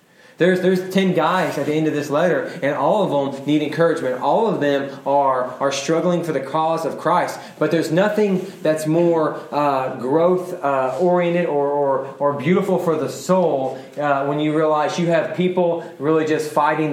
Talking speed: 185 wpm